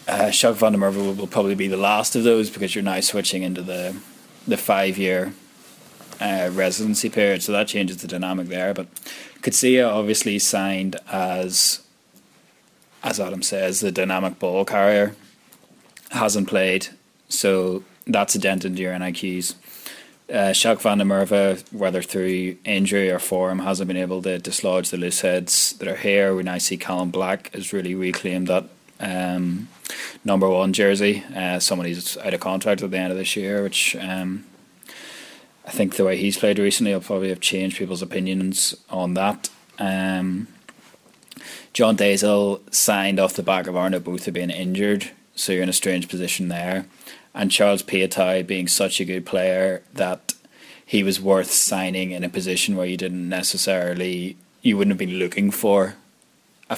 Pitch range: 90-100 Hz